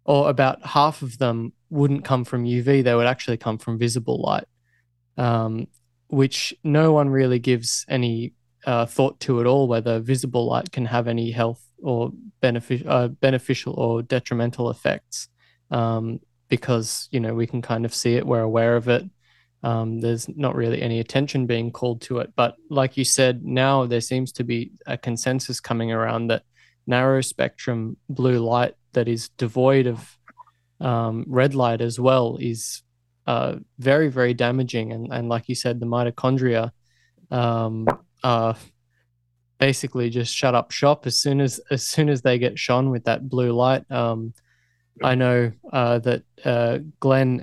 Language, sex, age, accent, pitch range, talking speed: English, male, 20-39, Australian, 115-130 Hz, 165 wpm